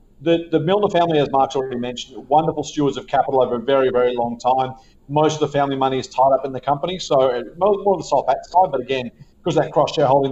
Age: 40-59